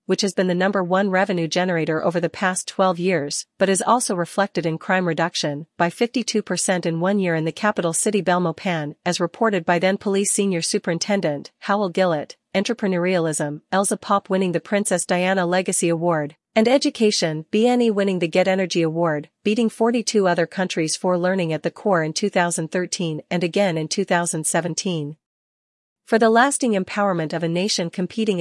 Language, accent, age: English, American, 40-59